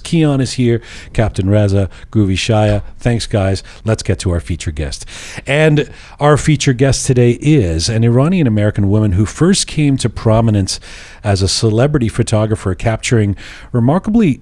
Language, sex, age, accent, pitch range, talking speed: English, male, 40-59, American, 95-140 Hz, 145 wpm